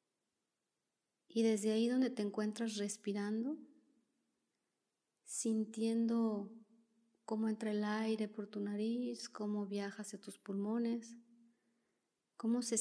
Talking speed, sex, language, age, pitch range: 105 wpm, female, Spanish, 30-49, 215-245 Hz